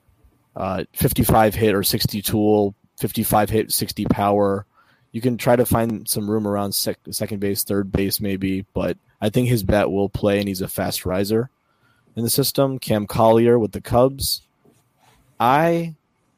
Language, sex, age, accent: English, male, 20-39, American